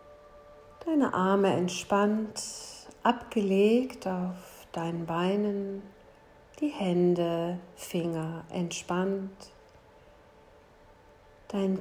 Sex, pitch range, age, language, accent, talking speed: female, 175-215 Hz, 40-59, German, German, 60 wpm